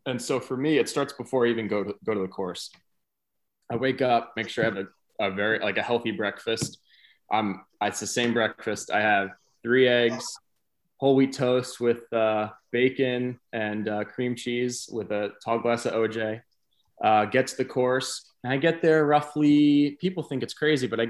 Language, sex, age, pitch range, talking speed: English, male, 20-39, 100-125 Hz, 195 wpm